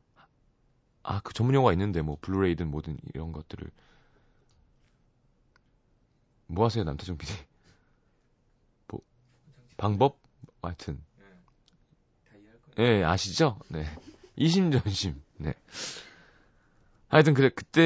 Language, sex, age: Korean, male, 30-49